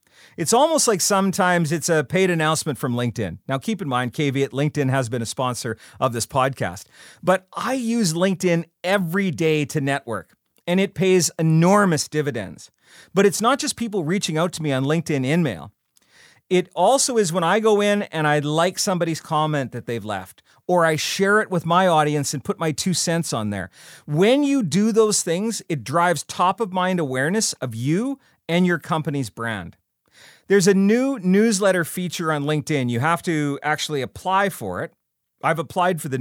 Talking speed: 185 wpm